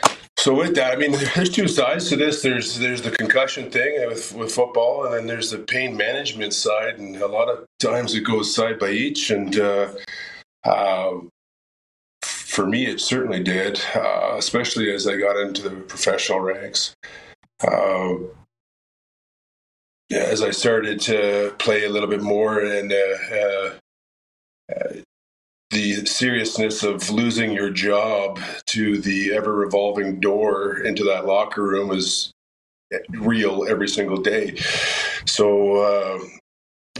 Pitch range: 95-110 Hz